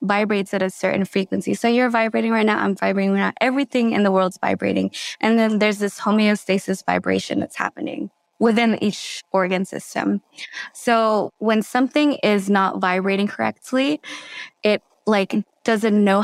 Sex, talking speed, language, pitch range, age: female, 155 wpm, English, 190-225 Hz, 20-39